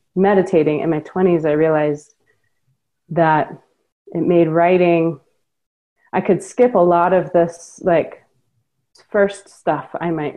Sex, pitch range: female, 150-180 Hz